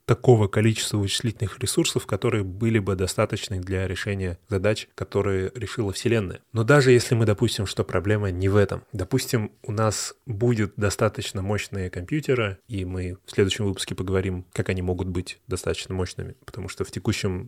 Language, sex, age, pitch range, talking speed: Russian, male, 20-39, 95-115 Hz, 160 wpm